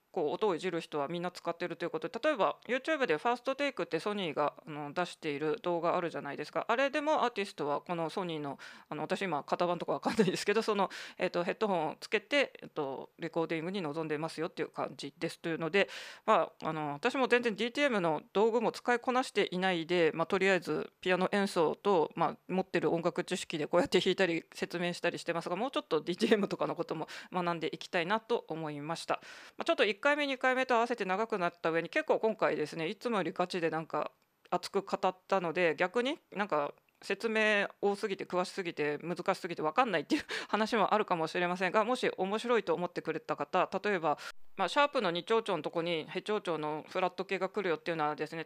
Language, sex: Japanese, female